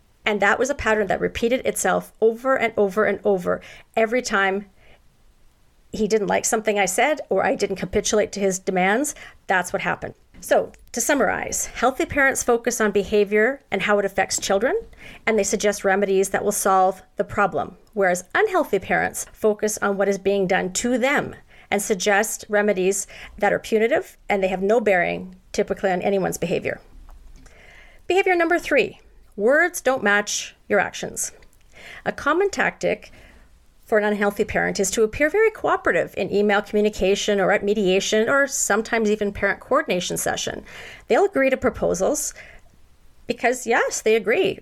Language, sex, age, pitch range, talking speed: English, female, 40-59, 200-250 Hz, 160 wpm